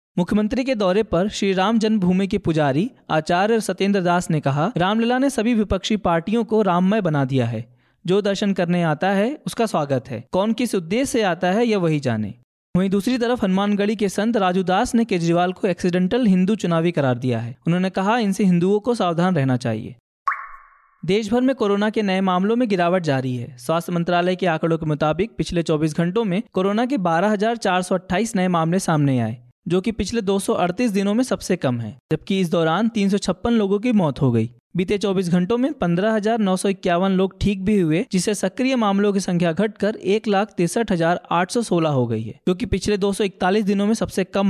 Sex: male